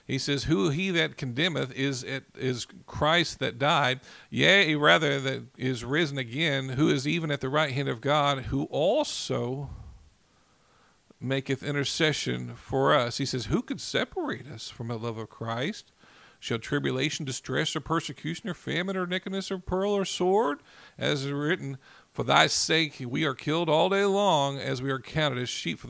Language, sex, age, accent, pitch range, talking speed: English, male, 50-69, American, 130-170 Hz, 175 wpm